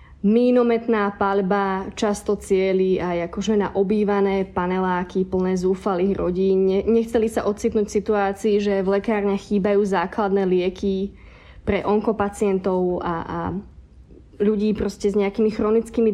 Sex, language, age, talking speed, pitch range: female, Slovak, 20-39, 115 wpm, 190-220 Hz